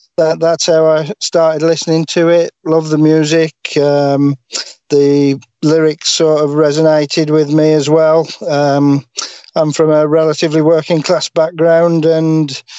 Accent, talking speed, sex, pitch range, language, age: British, 135 wpm, male, 145-160 Hz, English, 40-59